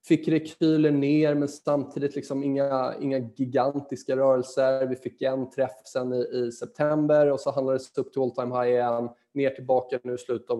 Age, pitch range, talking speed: 20-39, 120-155 Hz, 185 wpm